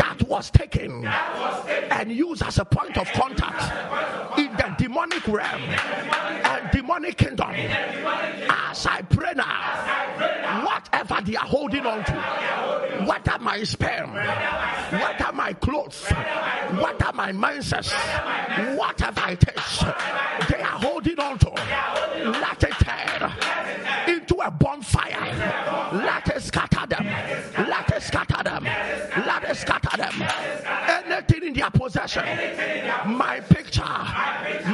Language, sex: English, male